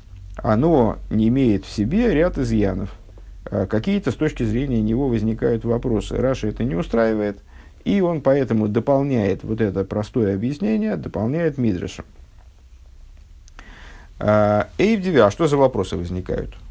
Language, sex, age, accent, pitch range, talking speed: Russian, male, 50-69, native, 90-125 Hz, 120 wpm